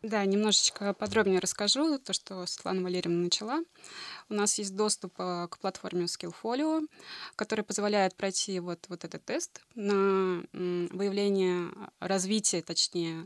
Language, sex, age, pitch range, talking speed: Russian, female, 20-39, 175-210 Hz, 120 wpm